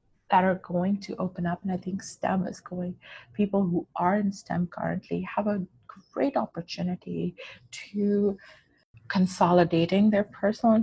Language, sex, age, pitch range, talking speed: English, female, 30-49, 170-205 Hz, 150 wpm